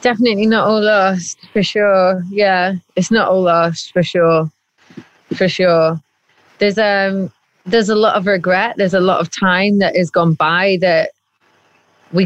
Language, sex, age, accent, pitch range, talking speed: English, female, 20-39, British, 185-295 Hz, 160 wpm